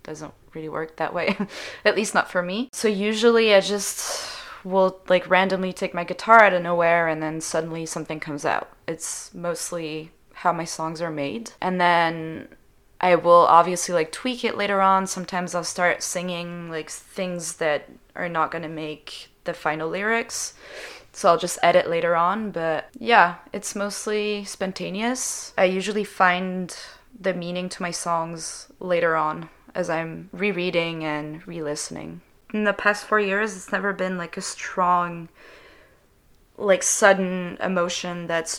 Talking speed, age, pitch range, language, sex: 155 wpm, 20-39, 165-195 Hz, English, female